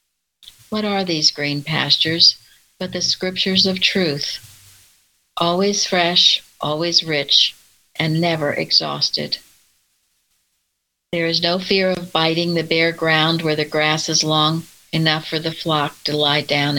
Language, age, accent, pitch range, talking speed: English, 60-79, American, 145-175 Hz, 135 wpm